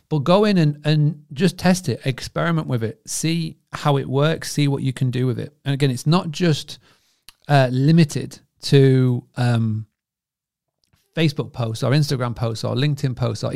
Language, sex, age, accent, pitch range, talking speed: English, male, 40-59, British, 120-150 Hz, 175 wpm